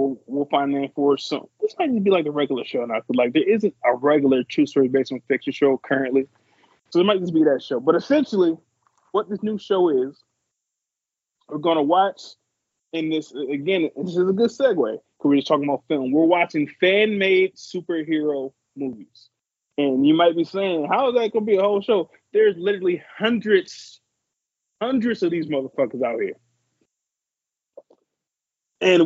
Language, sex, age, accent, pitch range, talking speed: English, male, 20-39, American, 145-205 Hz, 185 wpm